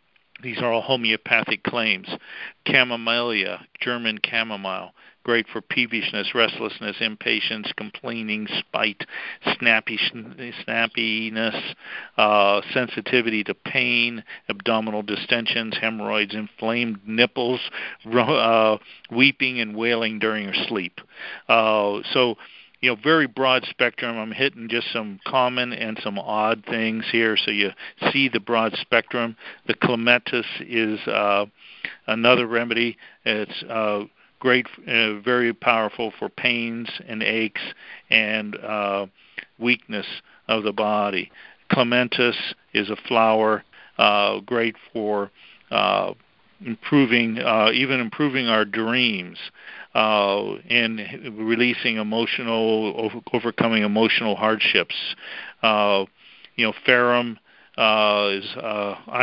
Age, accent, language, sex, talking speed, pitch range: 50-69, American, English, male, 105 wpm, 110-120 Hz